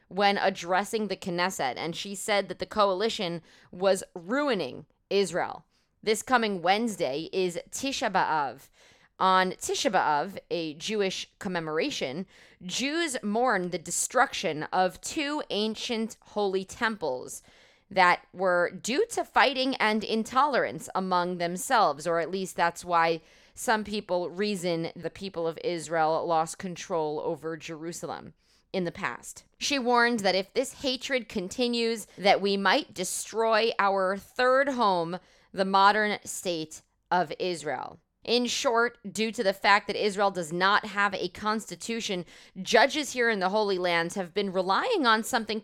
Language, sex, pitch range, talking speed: English, female, 180-230 Hz, 140 wpm